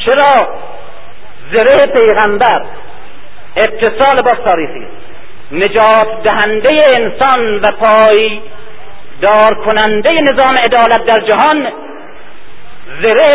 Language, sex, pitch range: Persian, male, 215-315 Hz